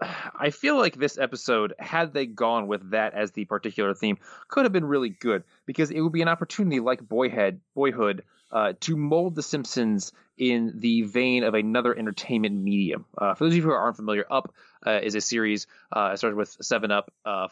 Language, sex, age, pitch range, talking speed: English, male, 20-39, 105-130 Hz, 200 wpm